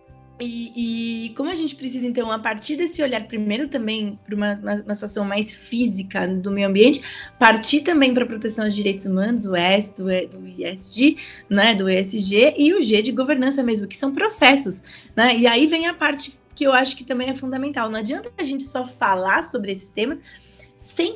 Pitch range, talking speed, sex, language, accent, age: 210-275 Hz, 200 wpm, female, Portuguese, Brazilian, 20-39